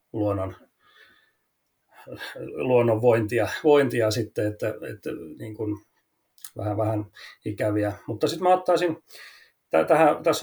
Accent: native